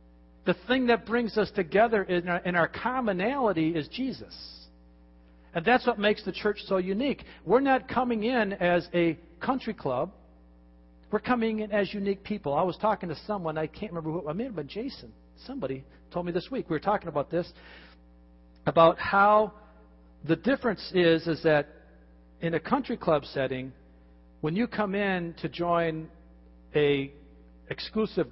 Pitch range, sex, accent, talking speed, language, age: 125-210 Hz, male, American, 170 wpm, English, 50-69